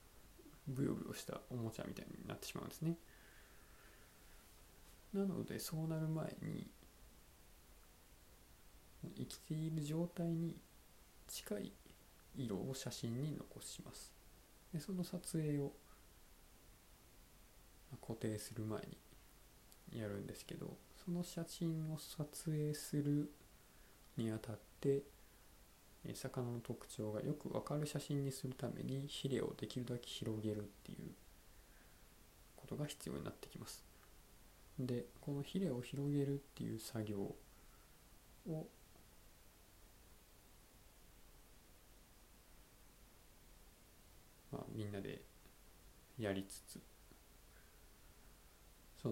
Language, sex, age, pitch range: Japanese, male, 20-39, 100-145 Hz